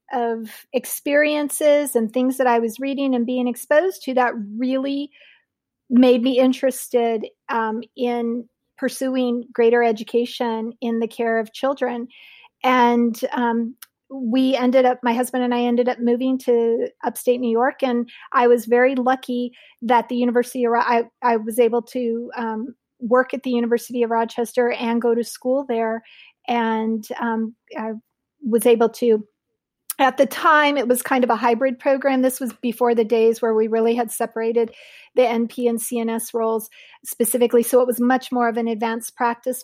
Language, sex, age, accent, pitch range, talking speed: English, female, 40-59, American, 225-250 Hz, 165 wpm